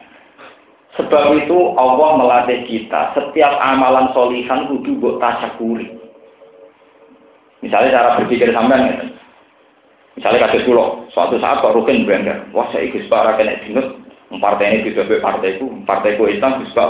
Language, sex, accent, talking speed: Indonesian, male, native, 130 wpm